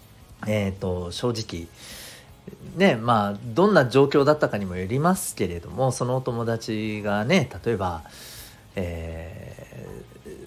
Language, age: Japanese, 40-59